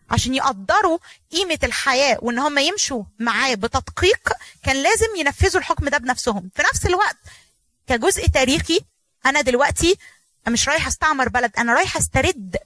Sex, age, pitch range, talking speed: female, 20-39, 235-335 Hz, 135 wpm